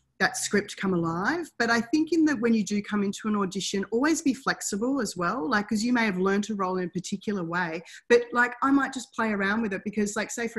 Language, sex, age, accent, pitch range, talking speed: English, female, 30-49, Australian, 180-215 Hz, 260 wpm